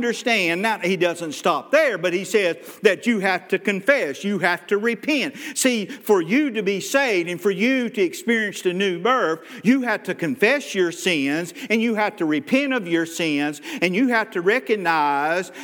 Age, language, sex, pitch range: 50-69, English, male, 180-245 Hz